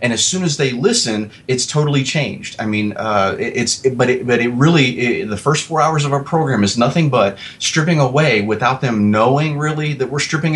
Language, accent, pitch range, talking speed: English, American, 110-145 Hz, 220 wpm